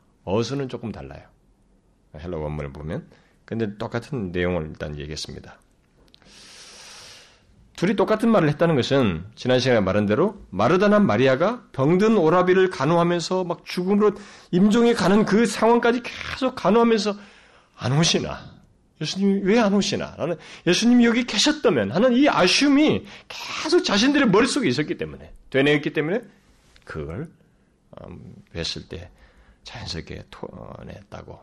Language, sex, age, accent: Korean, male, 40-59, native